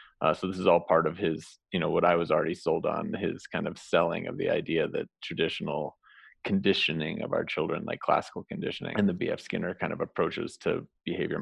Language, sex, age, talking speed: English, male, 30-49, 215 wpm